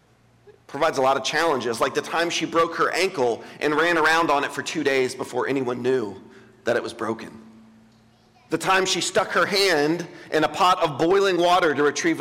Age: 40-59